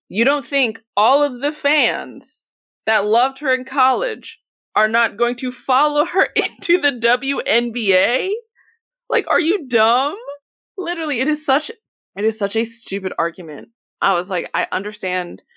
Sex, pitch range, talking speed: female, 190-265 Hz, 155 wpm